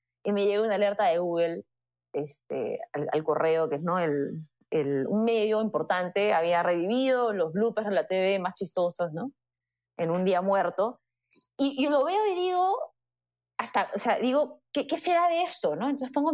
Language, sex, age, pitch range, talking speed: Spanish, female, 20-39, 175-265 Hz, 185 wpm